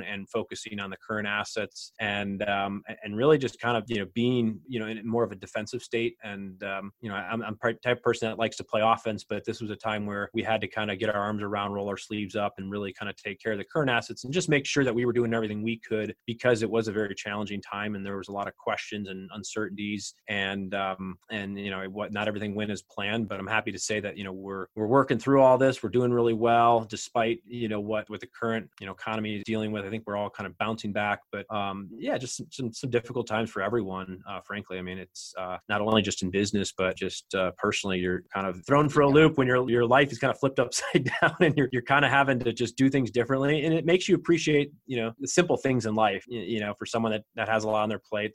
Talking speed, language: 275 wpm, English